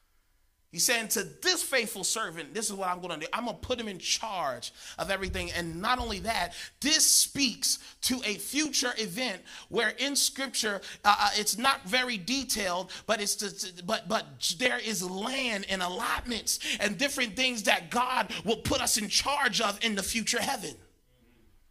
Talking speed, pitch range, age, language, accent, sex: 185 wpm, 205-270 Hz, 30-49, English, American, male